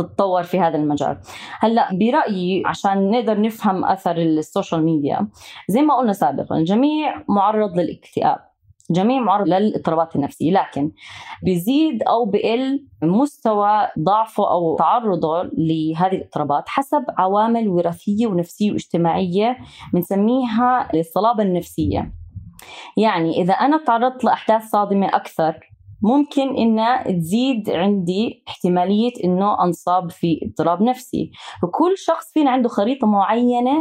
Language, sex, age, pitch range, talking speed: Arabic, female, 20-39, 170-240 Hz, 115 wpm